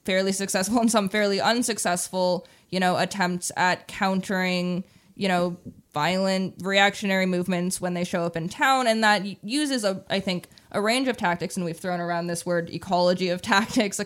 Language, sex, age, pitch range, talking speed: English, female, 20-39, 180-220 Hz, 180 wpm